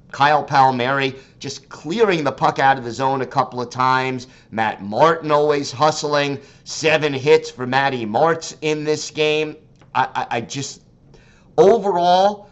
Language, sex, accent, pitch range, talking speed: English, male, American, 125-150 Hz, 150 wpm